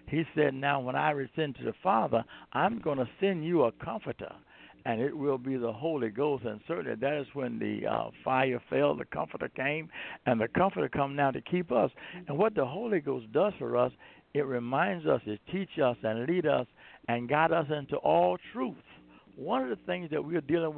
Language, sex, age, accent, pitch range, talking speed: English, male, 60-79, American, 120-160 Hz, 215 wpm